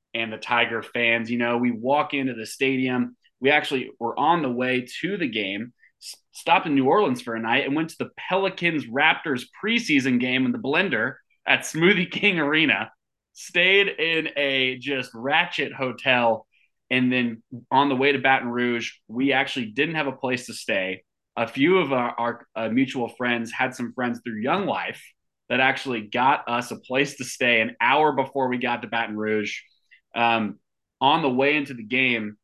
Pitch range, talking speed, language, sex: 115-135 Hz, 185 wpm, English, male